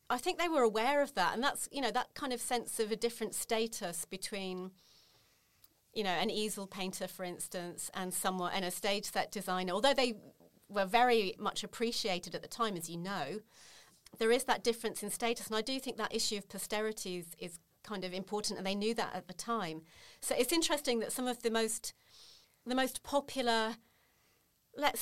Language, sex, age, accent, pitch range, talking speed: English, female, 40-59, British, 185-230 Hz, 200 wpm